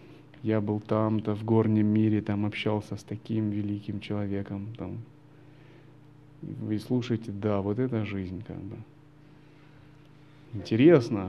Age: 30-49